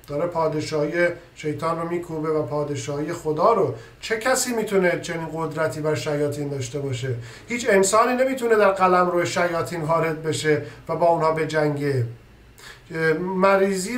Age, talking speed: 50-69, 135 wpm